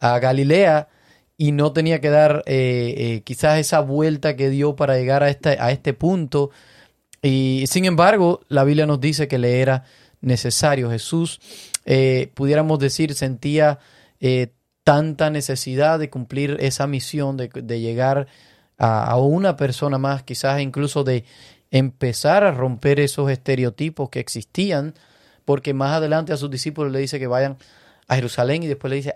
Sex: male